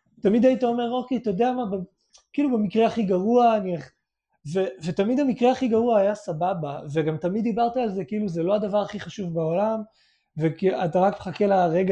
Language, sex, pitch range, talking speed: Hebrew, male, 155-215 Hz, 175 wpm